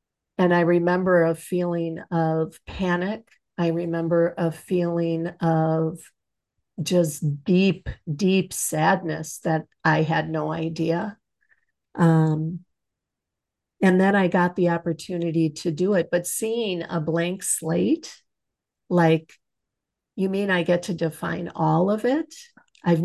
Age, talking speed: 50-69, 120 wpm